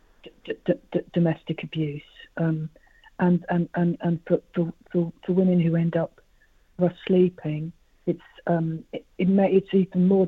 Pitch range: 160-175 Hz